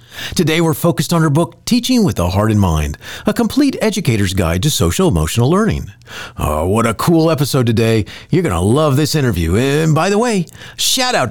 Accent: American